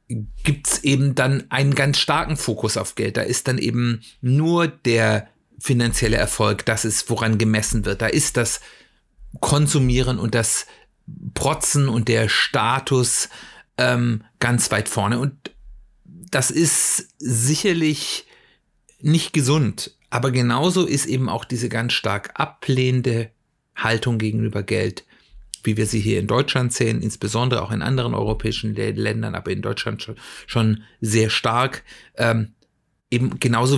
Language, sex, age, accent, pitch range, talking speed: German, male, 40-59, German, 110-140 Hz, 140 wpm